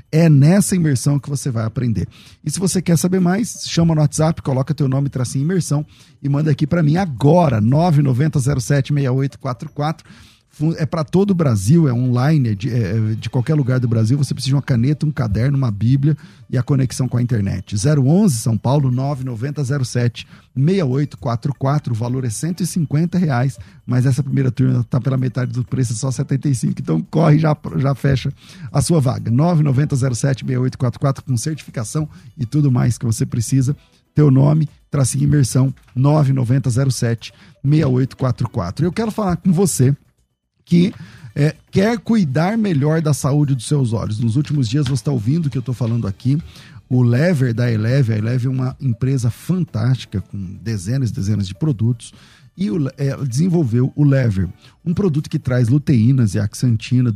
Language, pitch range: Portuguese, 125-150 Hz